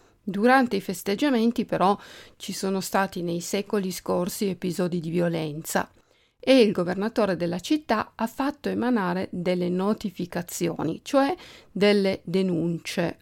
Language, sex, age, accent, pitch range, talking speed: Italian, female, 50-69, native, 175-240 Hz, 120 wpm